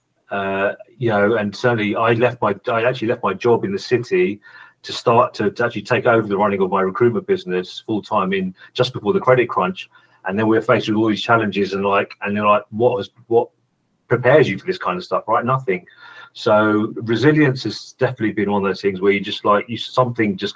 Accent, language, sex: British, English, male